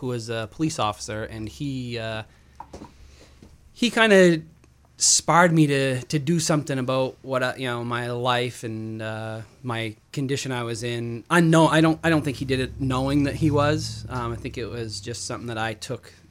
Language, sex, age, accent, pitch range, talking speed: English, male, 20-39, American, 110-135 Hz, 200 wpm